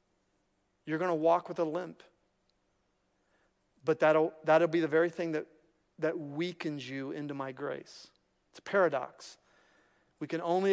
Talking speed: 150 wpm